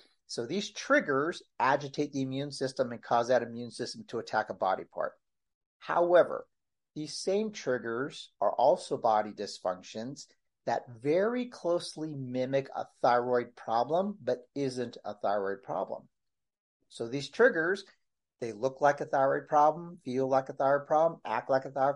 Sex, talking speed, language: male, 150 wpm, English